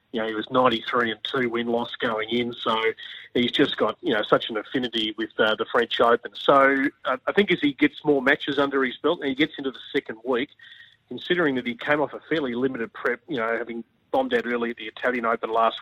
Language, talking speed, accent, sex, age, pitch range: English, 230 wpm, Australian, male, 30-49, 120-155 Hz